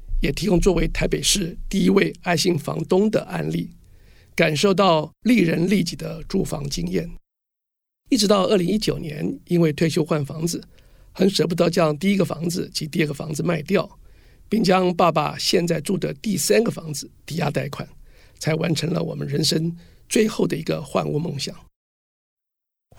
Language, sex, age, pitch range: Chinese, male, 50-69, 155-200 Hz